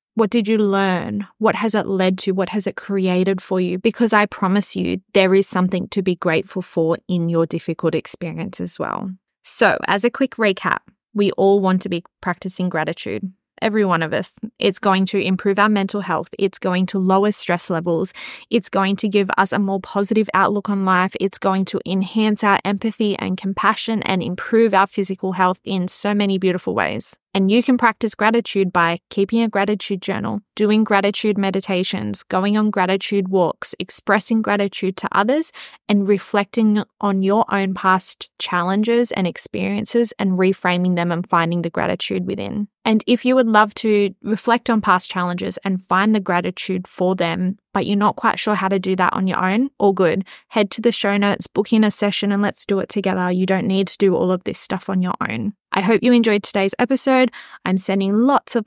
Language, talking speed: English, 200 wpm